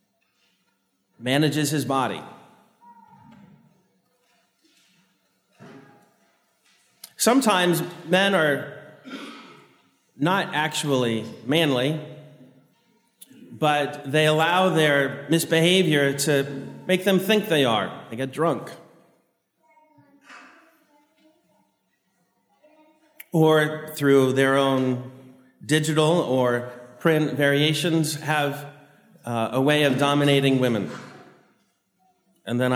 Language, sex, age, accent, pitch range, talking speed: English, male, 40-59, American, 130-185 Hz, 75 wpm